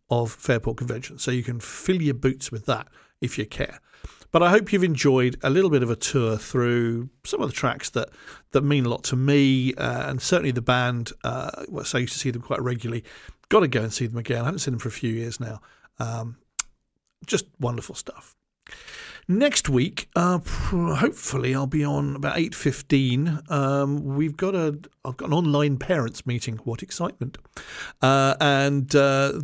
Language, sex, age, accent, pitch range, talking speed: English, male, 50-69, British, 120-145 Hz, 200 wpm